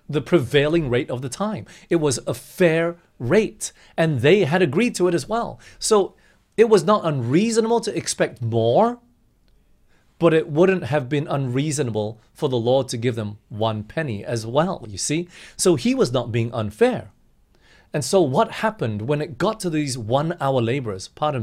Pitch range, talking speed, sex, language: 120-185 Hz, 180 wpm, male, English